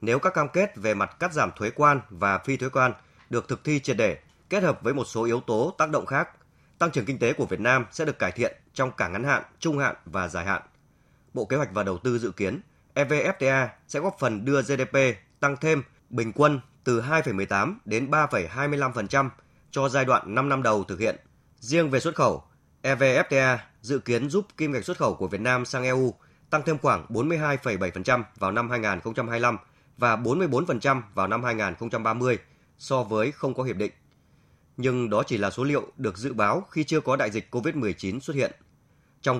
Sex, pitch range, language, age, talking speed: male, 110-140 Hz, Vietnamese, 20-39, 200 wpm